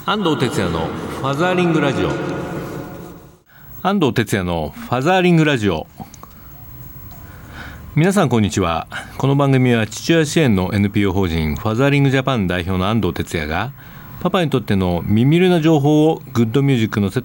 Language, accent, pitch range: Japanese, native, 90-150 Hz